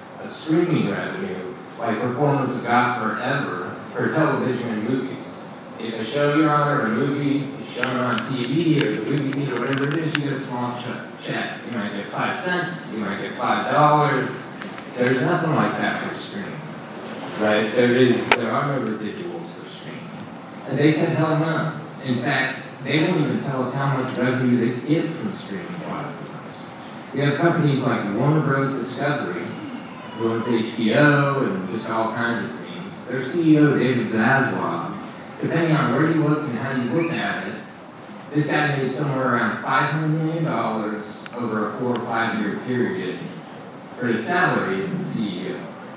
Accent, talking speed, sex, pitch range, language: American, 170 wpm, male, 120-150 Hz, English